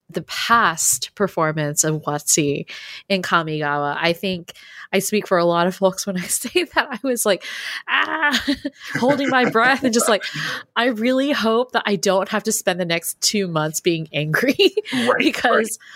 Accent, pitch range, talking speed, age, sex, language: American, 155-215 Hz, 175 wpm, 20-39, female, English